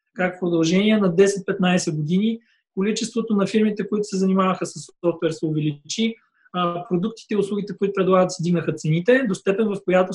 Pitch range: 180-215 Hz